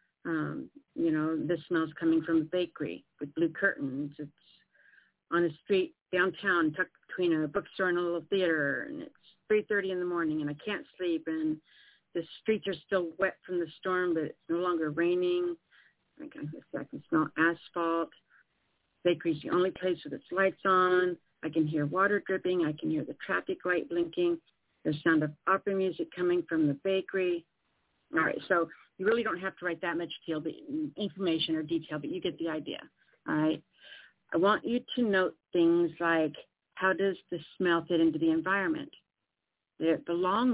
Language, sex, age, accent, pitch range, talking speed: English, female, 50-69, American, 165-195 Hz, 180 wpm